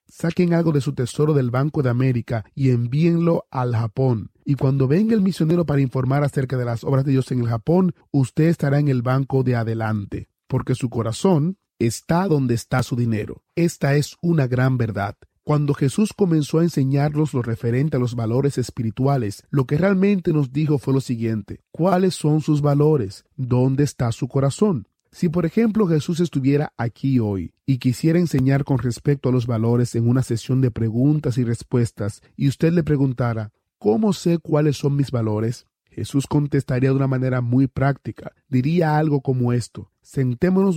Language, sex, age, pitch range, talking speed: Spanish, male, 30-49, 120-150 Hz, 175 wpm